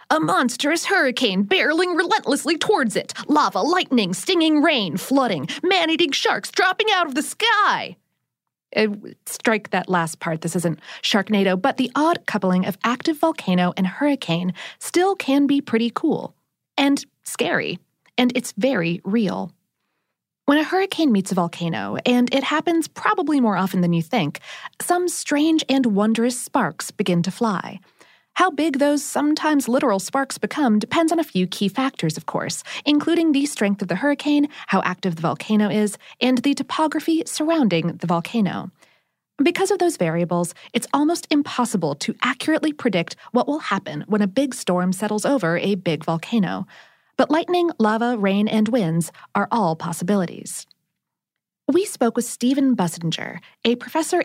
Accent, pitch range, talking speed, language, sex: American, 190-295 Hz, 155 wpm, English, female